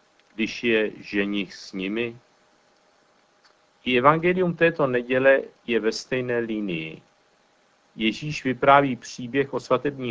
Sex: male